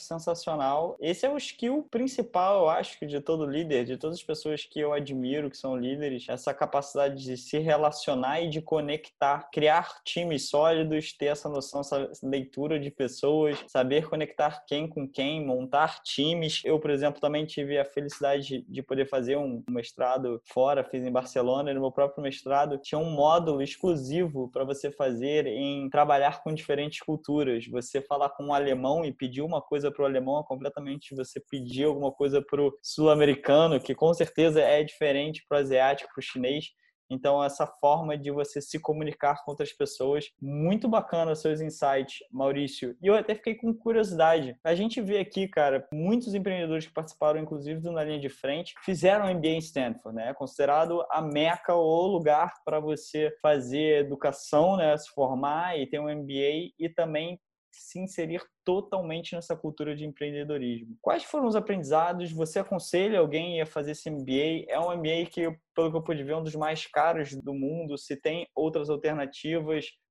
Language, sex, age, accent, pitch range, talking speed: Portuguese, male, 20-39, Brazilian, 140-160 Hz, 175 wpm